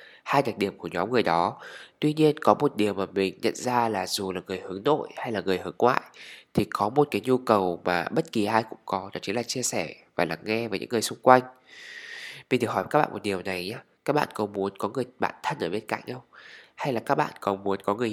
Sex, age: male, 20-39